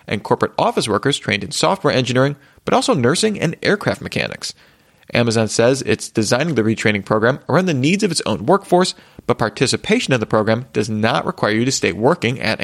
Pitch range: 110-150 Hz